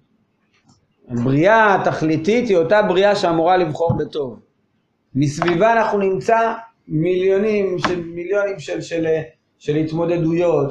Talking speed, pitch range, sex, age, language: 105 wpm, 135-180 Hz, male, 30-49, Hebrew